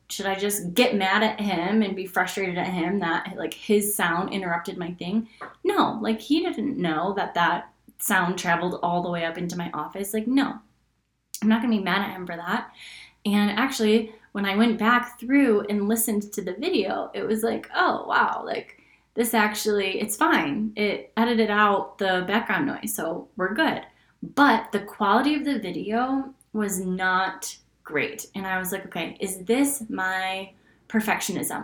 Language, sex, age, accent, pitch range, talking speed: English, female, 10-29, American, 185-230 Hz, 180 wpm